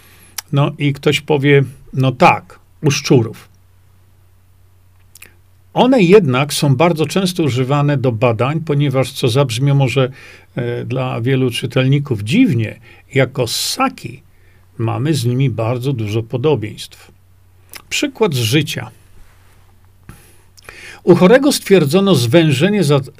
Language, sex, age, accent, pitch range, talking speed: Polish, male, 50-69, native, 100-160 Hz, 100 wpm